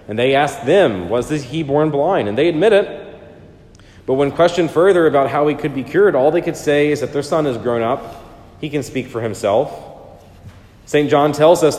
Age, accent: 40-59, American